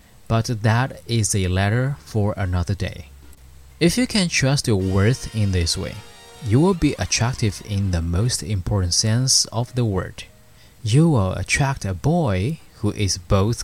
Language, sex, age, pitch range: Chinese, male, 20-39, 95-125 Hz